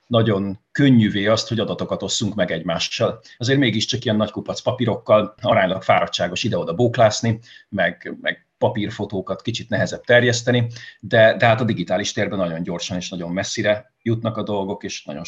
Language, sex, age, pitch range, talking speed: Hungarian, male, 30-49, 95-115 Hz, 160 wpm